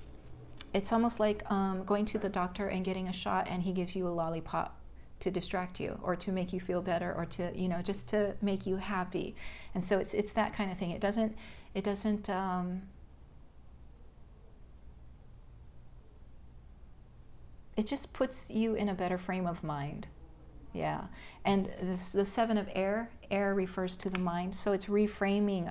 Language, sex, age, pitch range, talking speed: English, female, 40-59, 165-200 Hz, 175 wpm